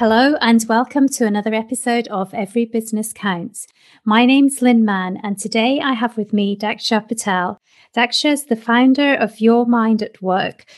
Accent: British